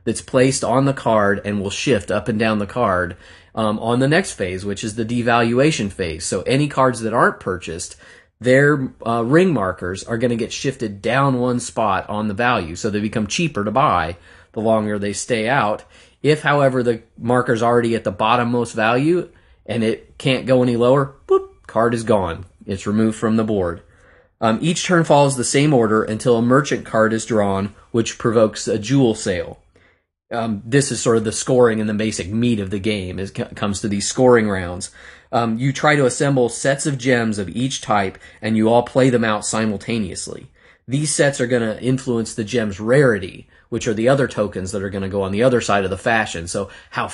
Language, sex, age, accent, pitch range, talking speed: English, male, 30-49, American, 100-125 Hz, 210 wpm